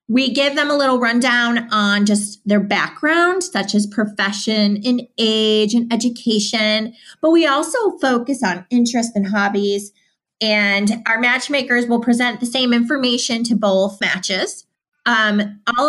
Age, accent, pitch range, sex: 30-49, American, 200-245 Hz, female